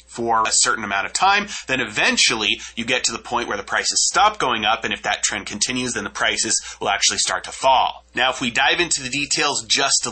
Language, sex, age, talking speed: English, male, 30-49, 245 wpm